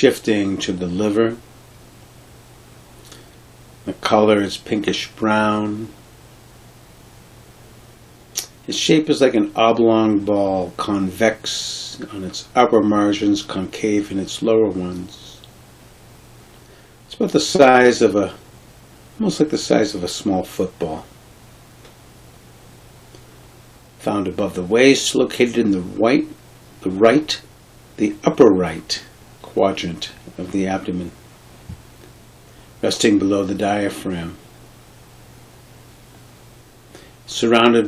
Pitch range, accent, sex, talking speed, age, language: 95-115 Hz, American, male, 100 wpm, 60-79, English